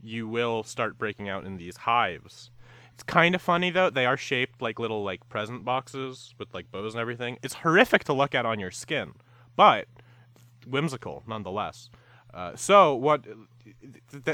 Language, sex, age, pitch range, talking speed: English, male, 30-49, 105-135 Hz, 180 wpm